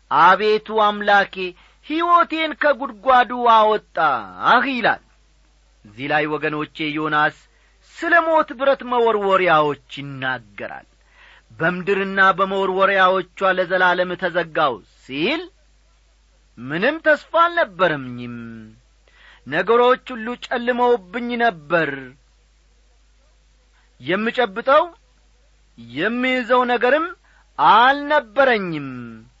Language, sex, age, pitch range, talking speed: Amharic, male, 40-59, 150-250 Hz, 60 wpm